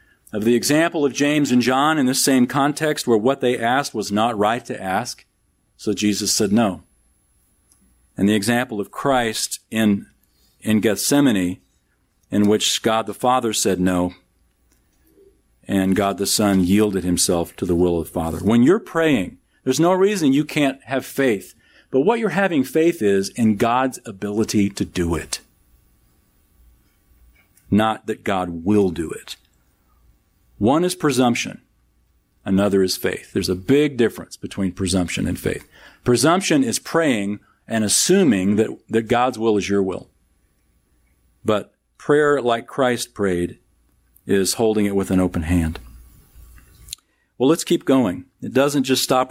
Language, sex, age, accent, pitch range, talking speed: English, male, 50-69, American, 95-130 Hz, 150 wpm